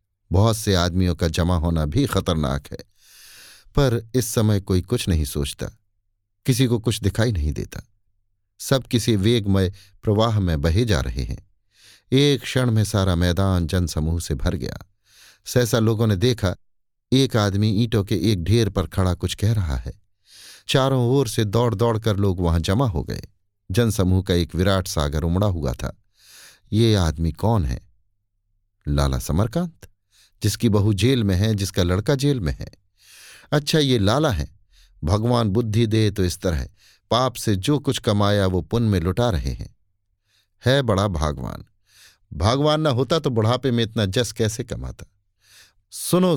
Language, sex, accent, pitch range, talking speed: Hindi, male, native, 95-120 Hz, 165 wpm